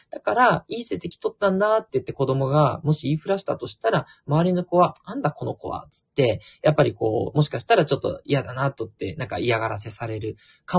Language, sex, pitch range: Japanese, male, 130-200 Hz